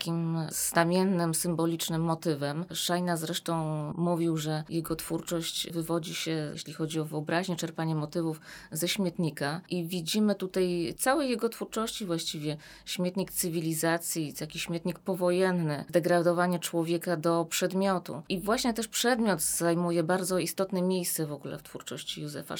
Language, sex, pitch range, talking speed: Polish, female, 160-180 Hz, 130 wpm